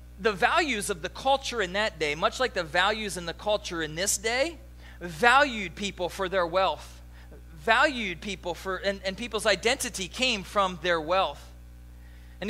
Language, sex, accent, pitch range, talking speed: English, male, American, 145-225 Hz, 170 wpm